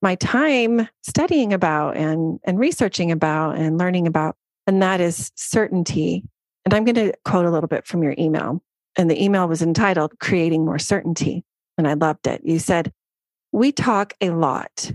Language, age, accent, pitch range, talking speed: English, 30-49, American, 160-195 Hz, 175 wpm